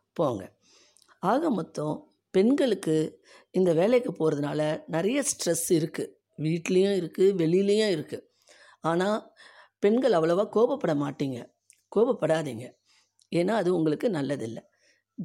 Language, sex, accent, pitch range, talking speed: Tamil, female, native, 140-195 Hz, 95 wpm